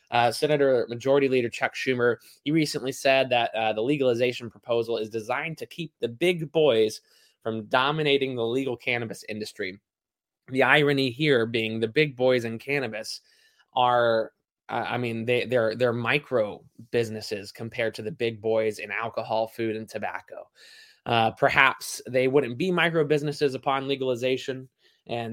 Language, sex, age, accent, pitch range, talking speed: English, male, 20-39, American, 115-150 Hz, 150 wpm